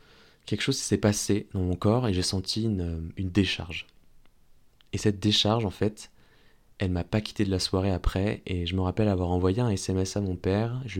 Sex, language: male, French